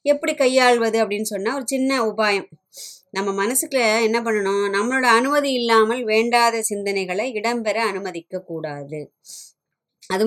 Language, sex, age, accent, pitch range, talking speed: Tamil, male, 20-39, native, 190-235 Hz, 115 wpm